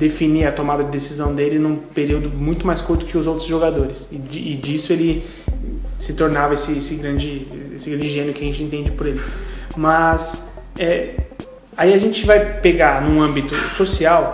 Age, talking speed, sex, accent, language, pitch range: 20-39, 180 wpm, male, Brazilian, Portuguese, 150-185 Hz